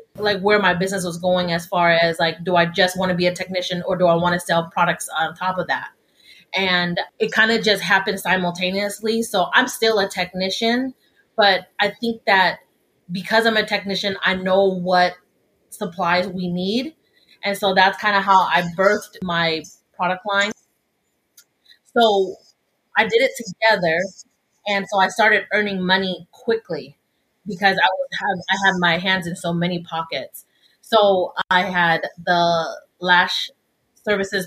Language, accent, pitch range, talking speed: English, American, 175-200 Hz, 165 wpm